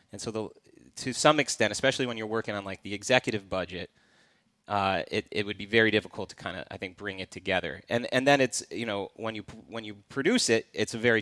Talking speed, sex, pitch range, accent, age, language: 240 wpm, male, 95-115 Hz, American, 30-49, English